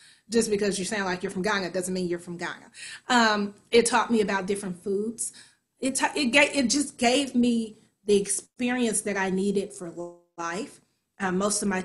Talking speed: 200 wpm